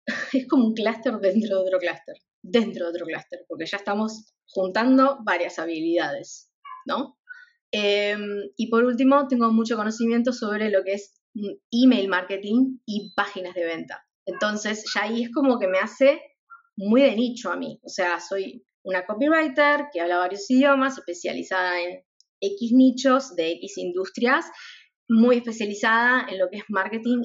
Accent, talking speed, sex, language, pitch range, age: Argentinian, 160 wpm, female, English, 185-245 Hz, 20-39